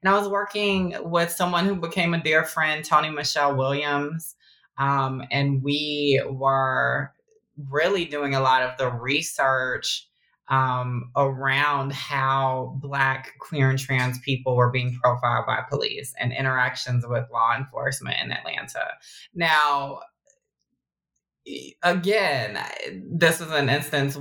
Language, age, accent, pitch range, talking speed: English, 20-39, American, 130-145 Hz, 125 wpm